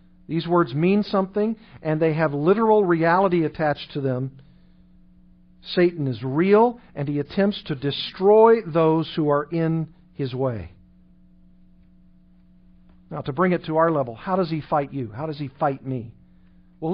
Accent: American